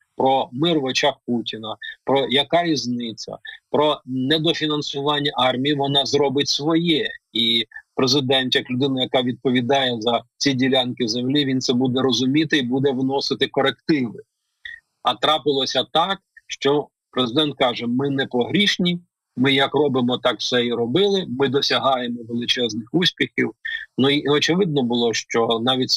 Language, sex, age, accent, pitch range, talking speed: Ukrainian, male, 40-59, native, 120-150 Hz, 135 wpm